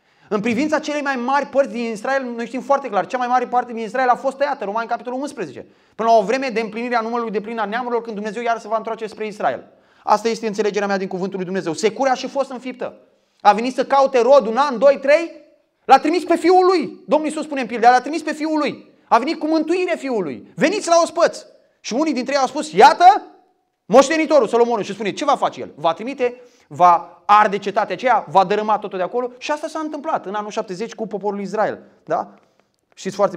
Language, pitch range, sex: Romanian, 190-270 Hz, male